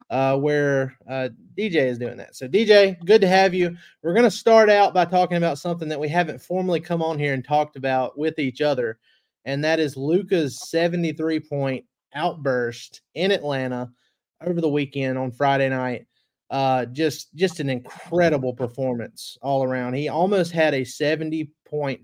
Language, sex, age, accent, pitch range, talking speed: English, male, 30-49, American, 130-165 Hz, 170 wpm